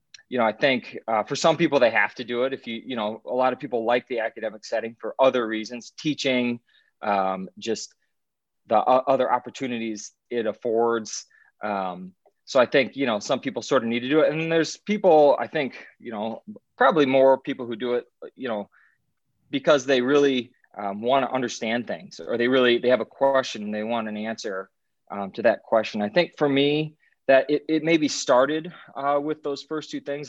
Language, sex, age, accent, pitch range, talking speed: English, male, 20-39, American, 115-140 Hz, 210 wpm